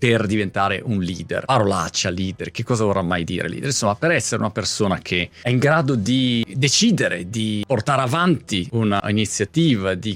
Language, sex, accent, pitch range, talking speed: Italian, male, native, 90-120 Hz, 170 wpm